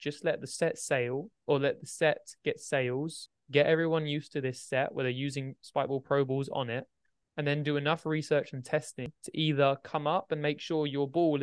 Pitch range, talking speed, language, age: 130-150 Hz, 215 wpm, English, 20-39